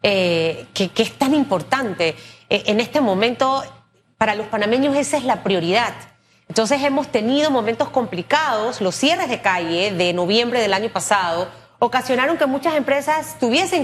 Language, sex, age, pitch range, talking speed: Spanish, female, 30-49, 210-280 Hz, 155 wpm